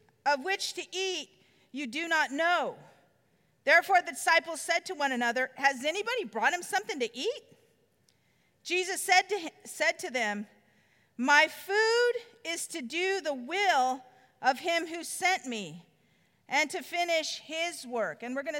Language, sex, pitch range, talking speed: English, female, 295-380 Hz, 150 wpm